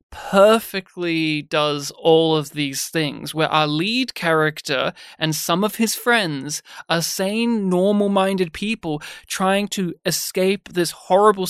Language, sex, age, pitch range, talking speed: English, male, 20-39, 175-215 Hz, 125 wpm